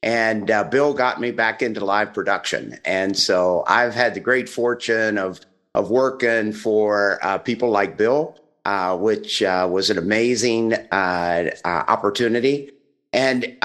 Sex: male